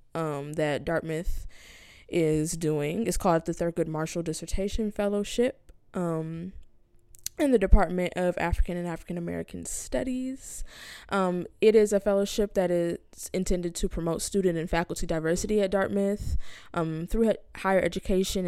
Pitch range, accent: 160-190 Hz, American